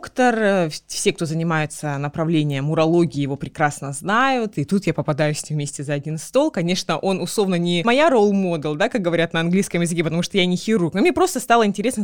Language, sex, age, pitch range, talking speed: Russian, female, 20-39, 170-230 Hz, 200 wpm